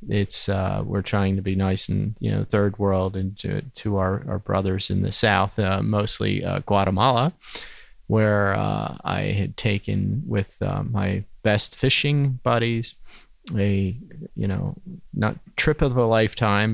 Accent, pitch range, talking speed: American, 95-115 Hz, 160 wpm